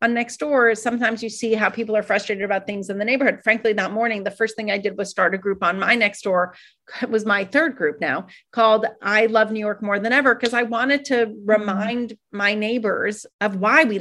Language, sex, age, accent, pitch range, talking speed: English, female, 40-59, American, 185-225 Hz, 235 wpm